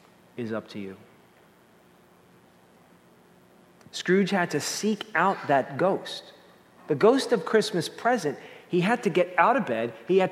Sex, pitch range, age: male, 160-220 Hz, 40-59